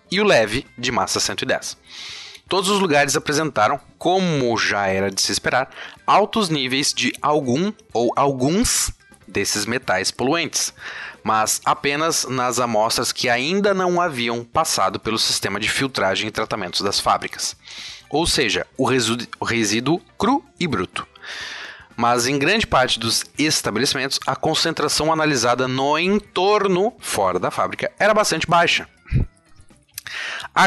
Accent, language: Brazilian, Portuguese